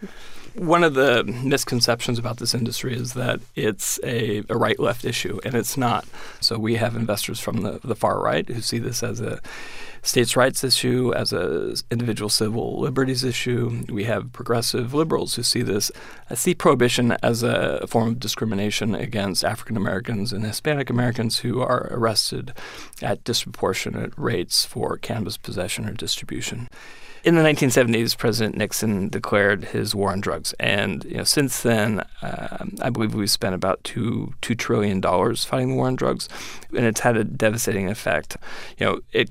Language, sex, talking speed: English, male, 165 wpm